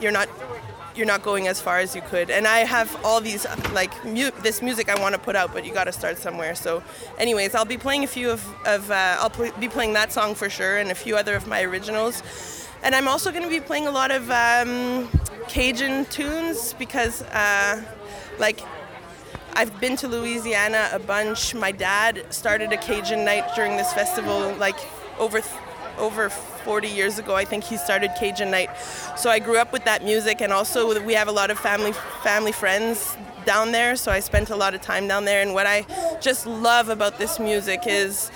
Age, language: 20-39, English